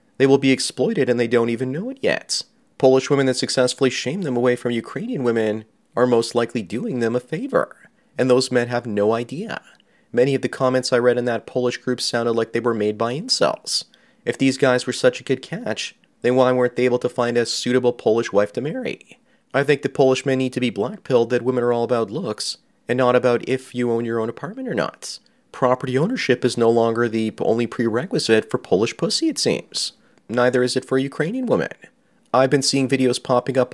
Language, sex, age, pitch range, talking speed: English, male, 30-49, 115-130 Hz, 220 wpm